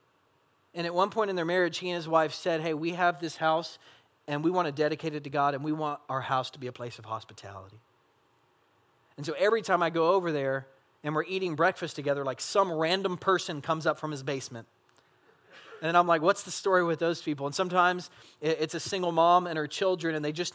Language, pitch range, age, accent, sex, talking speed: English, 130-165 Hz, 30-49, American, male, 230 wpm